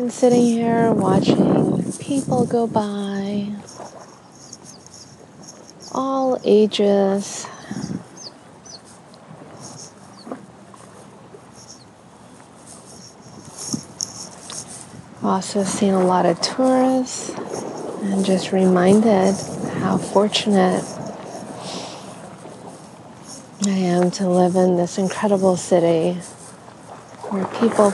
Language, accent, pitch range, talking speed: English, American, 185-220 Hz, 60 wpm